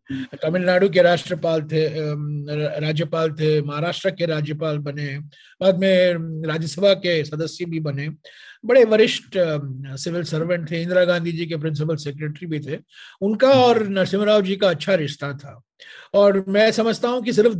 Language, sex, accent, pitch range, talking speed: Hindi, male, native, 160-200 Hz, 150 wpm